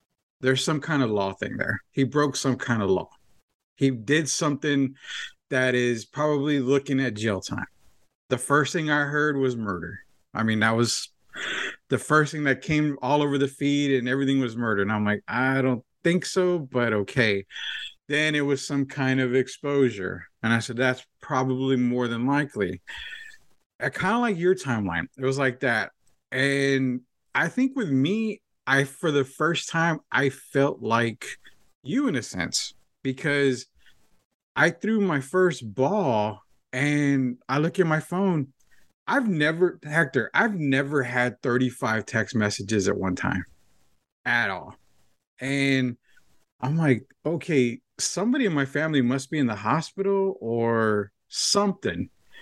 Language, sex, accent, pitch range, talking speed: English, male, American, 120-150 Hz, 160 wpm